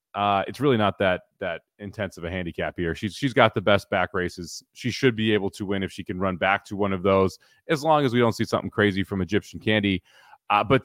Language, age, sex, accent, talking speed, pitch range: English, 30-49, male, American, 255 wpm, 100-125 Hz